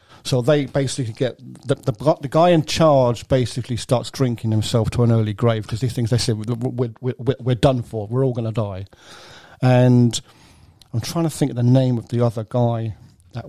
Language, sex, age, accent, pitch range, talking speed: English, male, 50-69, British, 115-135 Hz, 205 wpm